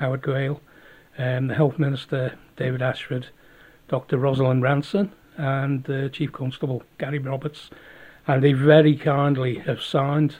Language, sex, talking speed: English, male, 140 wpm